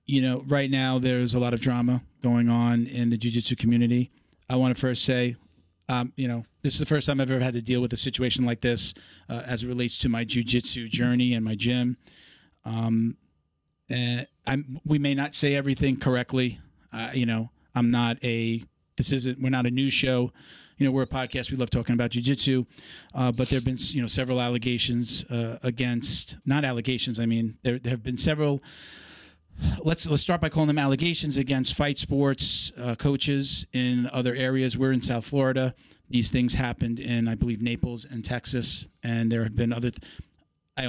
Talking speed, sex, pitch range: 200 wpm, male, 120-130 Hz